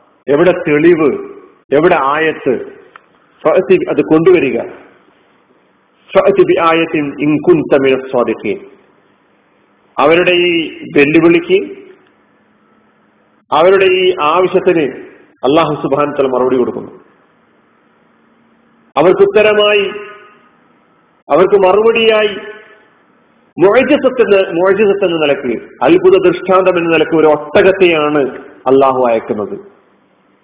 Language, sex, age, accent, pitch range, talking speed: Malayalam, male, 40-59, native, 165-215 Hz, 65 wpm